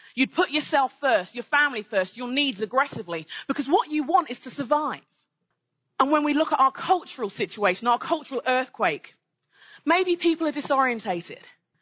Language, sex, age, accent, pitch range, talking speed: English, female, 30-49, British, 225-320 Hz, 160 wpm